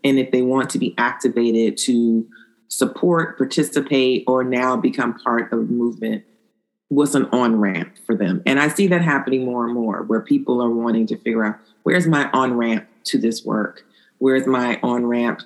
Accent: American